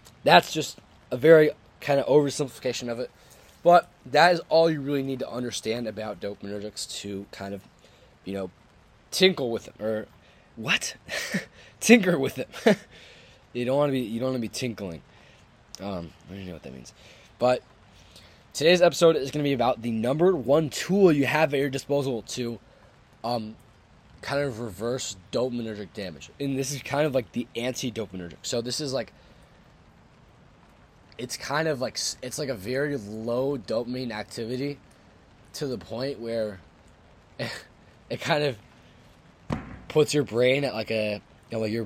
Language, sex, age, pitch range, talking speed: English, male, 20-39, 105-135 Hz, 170 wpm